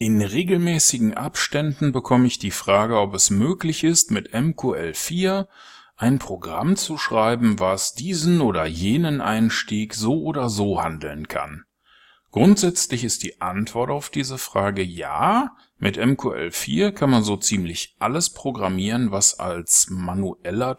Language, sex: German, male